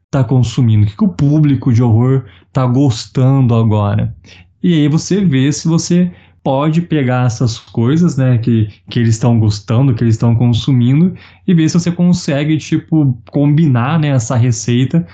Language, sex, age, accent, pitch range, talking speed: Portuguese, male, 20-39, Brazilian, 115-150 Hz, 165 wpm